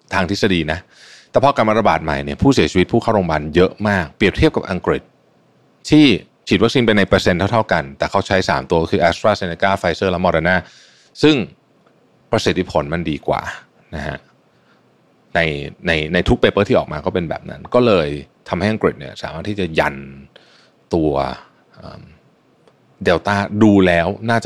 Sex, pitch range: male, 80-100 Hz